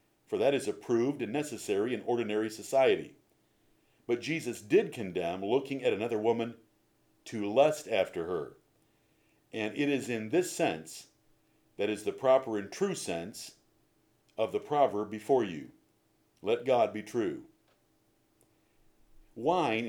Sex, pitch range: male, 110-140 Hz